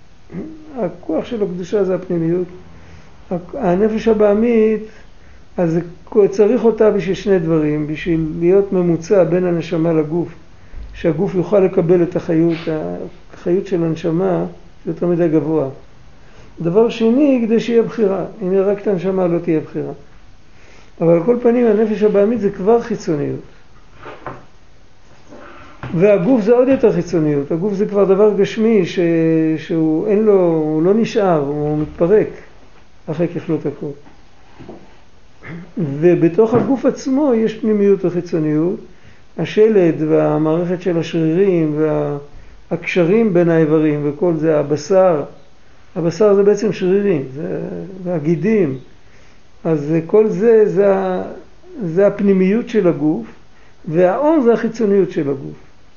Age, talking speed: 50-69, 120 wpm